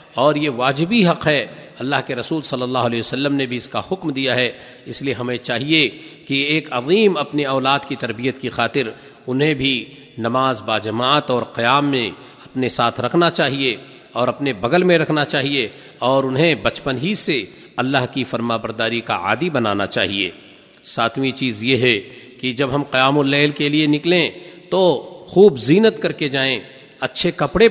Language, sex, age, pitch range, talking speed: Urdu, male, 50-69, 125-155 Hz, 180 wpm